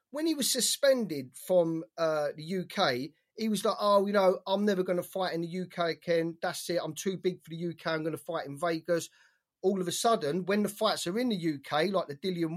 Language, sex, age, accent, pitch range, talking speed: English, male, 30-49, British, 160-190 Hz, 245 wpm